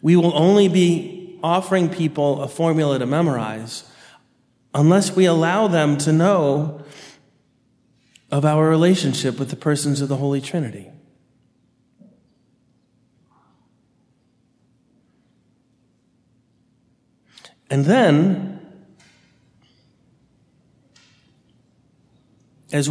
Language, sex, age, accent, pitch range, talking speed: English, male, 40-59, American, 130-165 Hz, 75 wpm